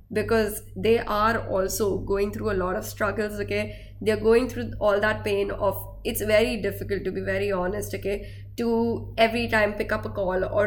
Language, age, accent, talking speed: English, 20-39, Indian, 190 wpm